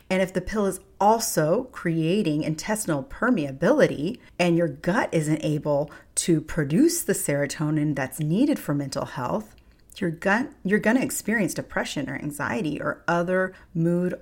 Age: 40-59